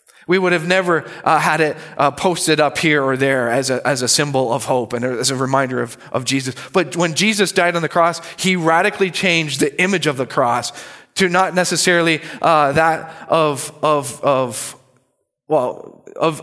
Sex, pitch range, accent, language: male, 140-180 Hz, American, English